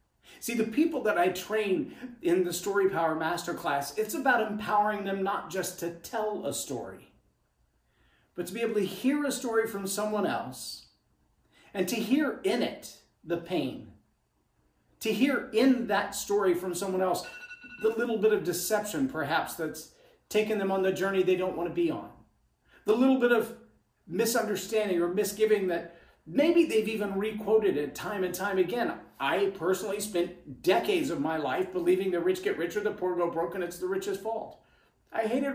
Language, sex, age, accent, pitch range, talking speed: English, male, 40-59, American, 190-240 Hz, 175 wpm